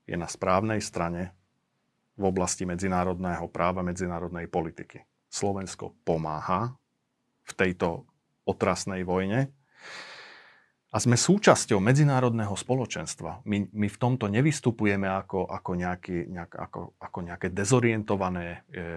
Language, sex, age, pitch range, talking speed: Slovak, male, 40-59, 90-115 Hz, 100 wpm